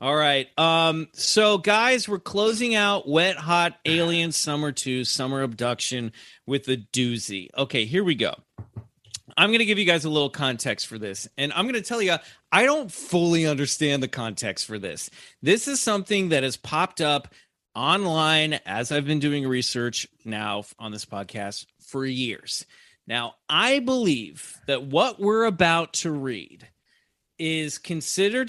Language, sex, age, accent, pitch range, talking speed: English, male, 30-49, American, 130-190 Hz, 160 wpm